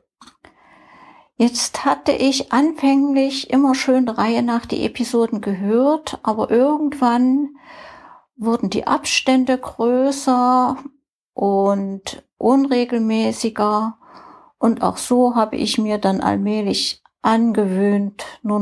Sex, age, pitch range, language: female, 60-79, 210-270 Hz, German